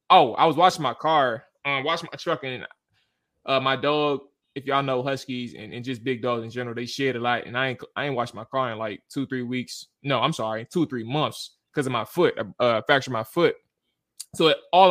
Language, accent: English, American